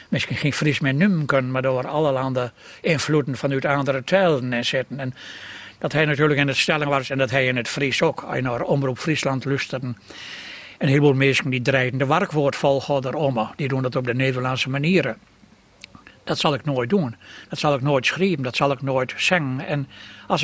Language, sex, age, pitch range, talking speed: Dutch, male, 60-79, 130-165 Hz, 205 wpm